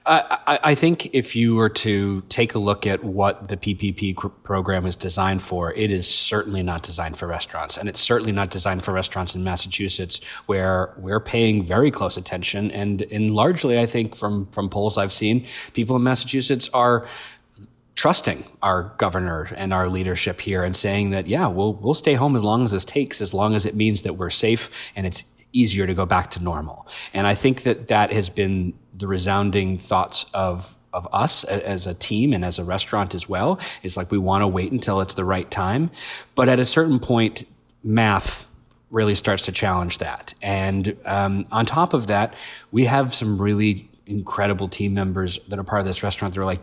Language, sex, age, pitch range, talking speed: English, male, 30-49, 95-110 Hz, 200 wpm